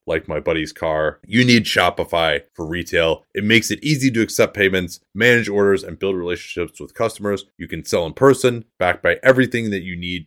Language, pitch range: English, 90-125 Hz